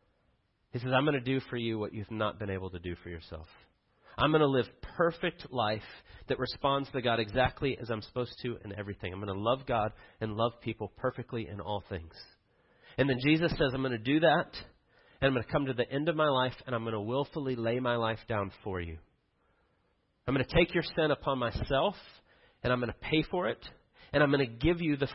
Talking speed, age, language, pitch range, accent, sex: 235 wpm, 40-59, English, 110-140 Hz, American, male